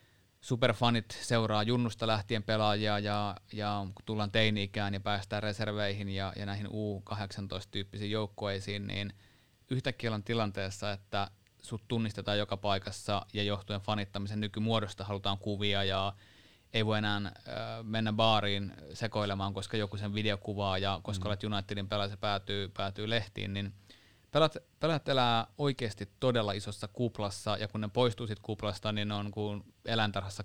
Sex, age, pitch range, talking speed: male, 30-49, 100-110 Hz, 140 wpm